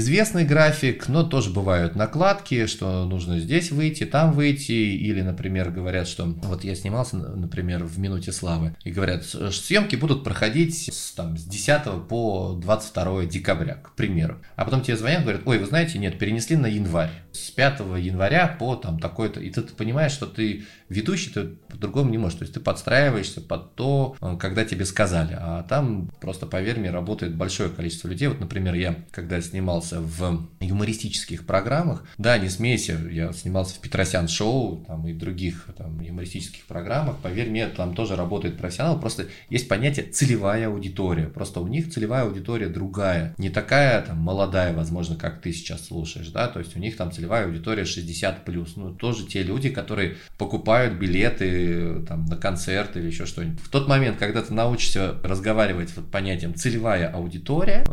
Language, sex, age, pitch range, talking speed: Russian, male, 20-39, 85-115 Hz, 165 wpm